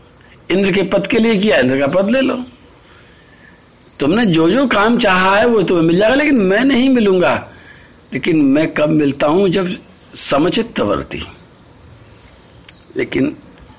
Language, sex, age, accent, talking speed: Hindi, male, 60-79, native, 140 wpm